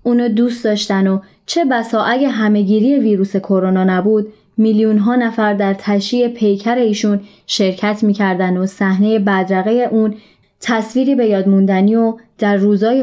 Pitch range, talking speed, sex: 195-235 Hz, 135 wpm, female